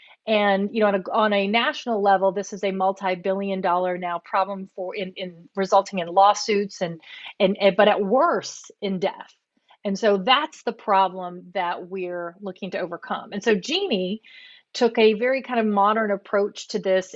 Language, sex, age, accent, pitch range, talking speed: English, female, 40-59, American, 190-220 Hz, 180 wpm